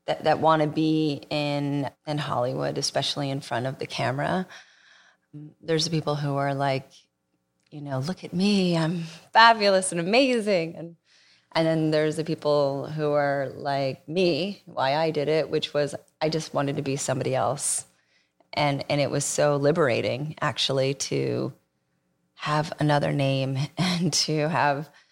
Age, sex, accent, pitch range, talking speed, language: 30-49, female, American, 130-150 Hz, 160 wpm, English